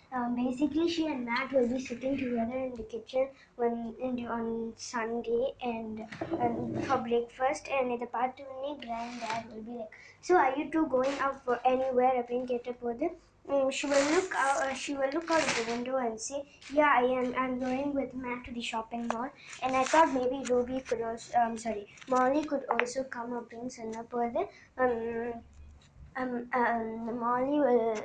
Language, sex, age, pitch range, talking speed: Tamil, male, 20-39, 230-265 Hz, 195 wpm